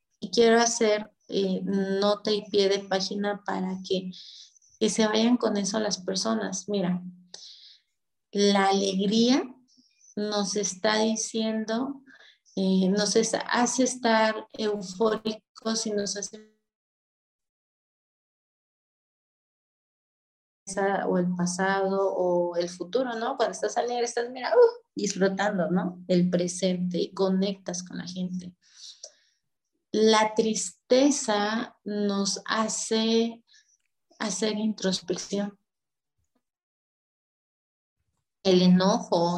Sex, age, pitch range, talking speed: female, 30-49, 190-220 Hz, 95 wpm